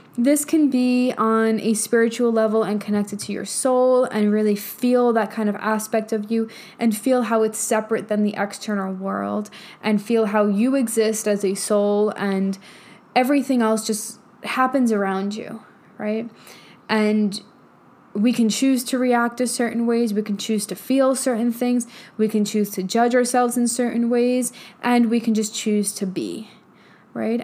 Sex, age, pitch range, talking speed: female, 10-29, 205-240 Hz, 175 wpm